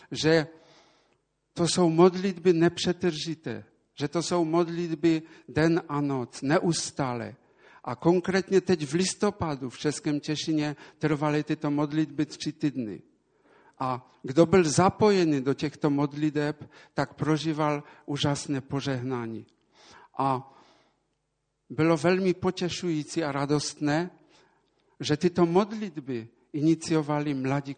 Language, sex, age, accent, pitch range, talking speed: Czech, male, 50-69, Polish, 145-180 Hz, 105 wpm